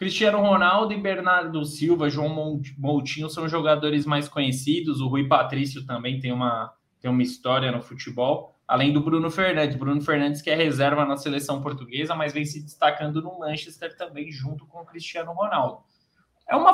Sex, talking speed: male, 170 wpm